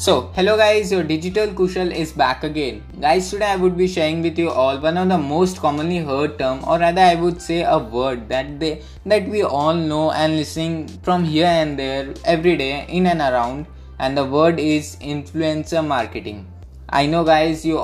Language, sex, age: English, male, 20-39